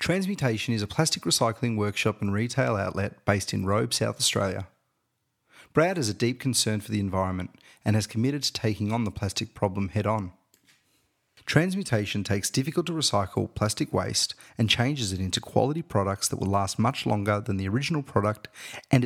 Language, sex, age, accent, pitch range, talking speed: English, male, 30-49, Australian, 100-120 Hz, 175 wpm